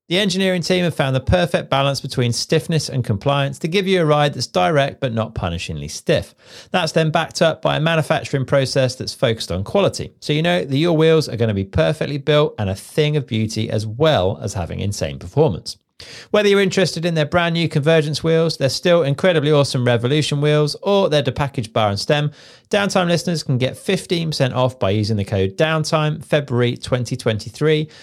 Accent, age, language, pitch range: British, 40-59, English, 120-170 Hz